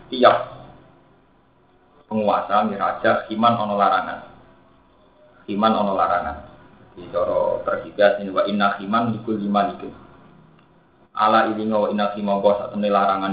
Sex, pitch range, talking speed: male, 100-120 Hz, 115 wpm